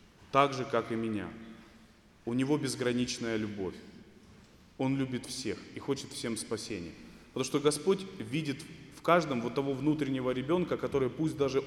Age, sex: 20-39, male